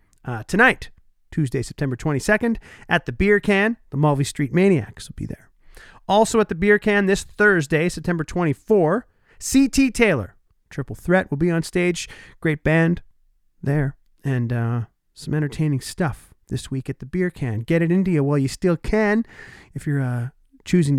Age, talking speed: 40-59, 170 wpm